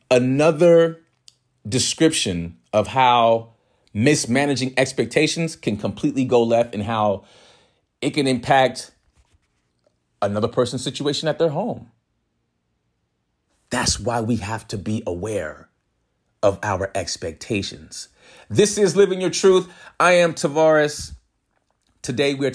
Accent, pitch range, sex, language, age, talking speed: American, 105-145 Hz, male, English, 40-59, 110 wpm